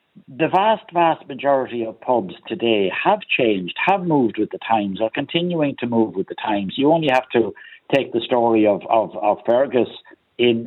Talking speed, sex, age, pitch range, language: 185 wpm, male, 60-79, 110-145 Hz, English